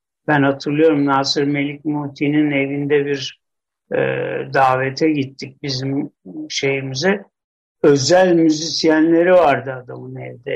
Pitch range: 135-205 Hz